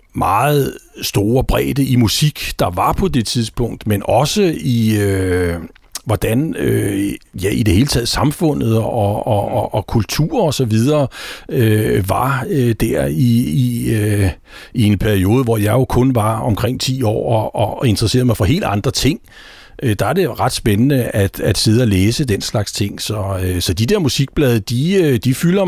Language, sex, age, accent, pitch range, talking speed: Danish, male, 60-79, native, 105-130 Hz, 175 wpm